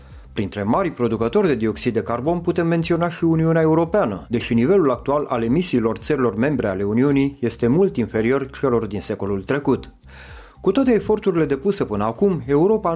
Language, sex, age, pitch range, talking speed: Romanian, male, 30-49, 115-165 Hz, 160 wpm